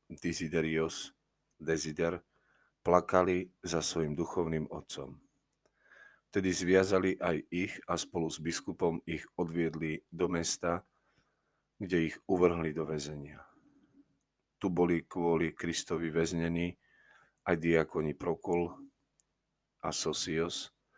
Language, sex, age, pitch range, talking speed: Slovak, male, 40-59, 80-90 Hz, 95 wpm